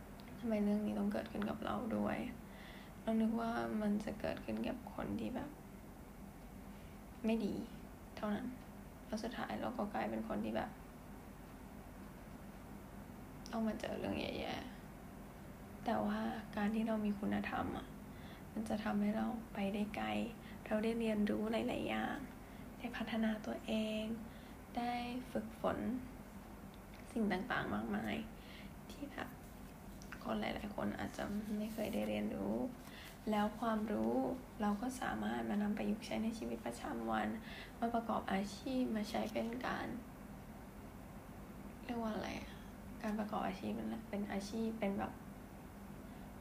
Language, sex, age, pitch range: Thai, female, 10-29, 205-230 Hz